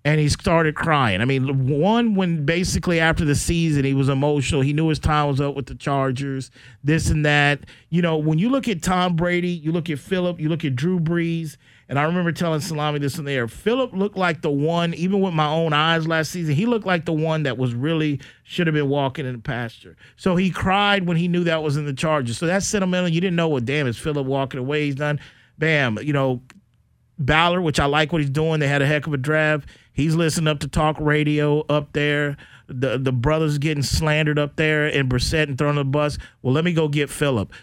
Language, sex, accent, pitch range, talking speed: English, male, American, 140-170 Hz, 240 wpm